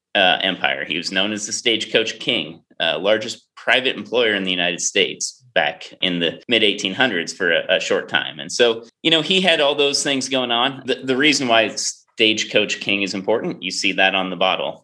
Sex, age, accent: male, 30-49, American